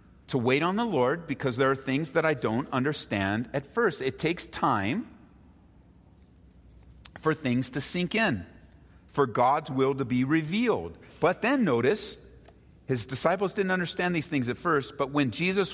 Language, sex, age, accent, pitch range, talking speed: English, male, 40-59, American, 105-165 Hz, 165 wpm